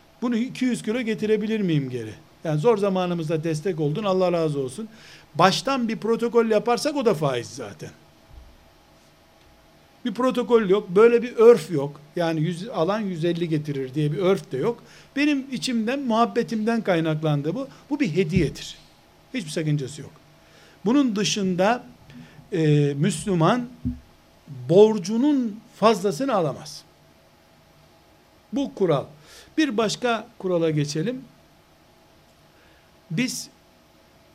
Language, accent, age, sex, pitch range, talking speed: Turkish, native, 60-79, male, 160-225 Hz, 110 wpm